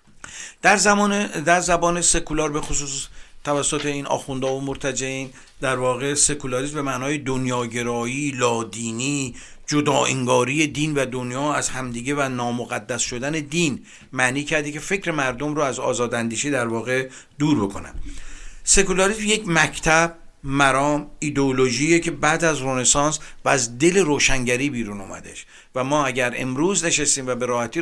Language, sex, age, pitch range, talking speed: Persian, male, 50-69, 125-155 Hz, 140 wpm